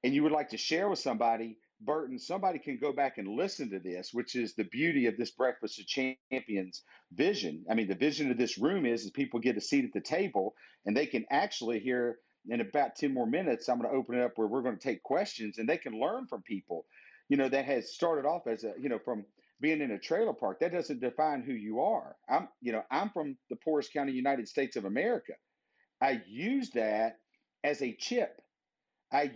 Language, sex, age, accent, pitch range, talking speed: English, male, 50-69, American, 120-195 Hz, 225 wpm